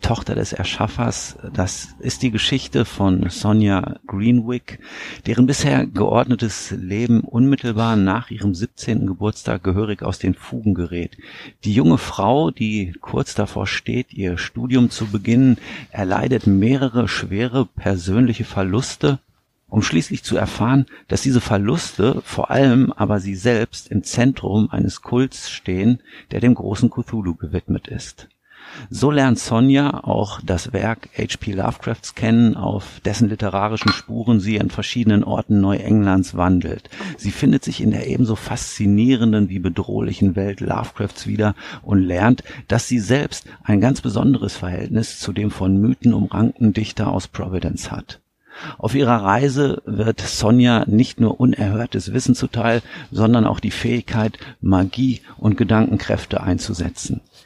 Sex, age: male, 50-69